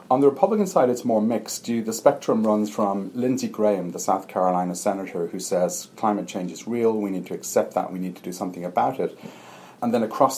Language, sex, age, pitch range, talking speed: English, male, 40-59, 95-115 Hz, 220 wpm